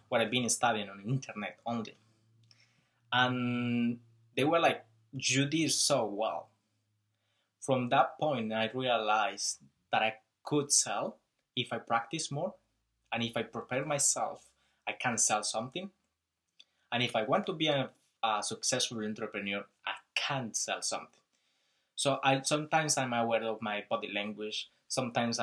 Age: 20-39